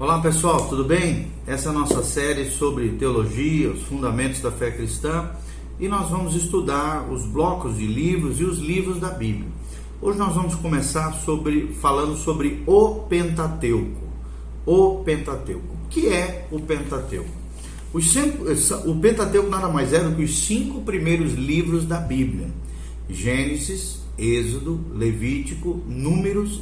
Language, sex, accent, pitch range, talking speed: Portuguese, male, Brazilian, 135-180 Hz, 140 wpm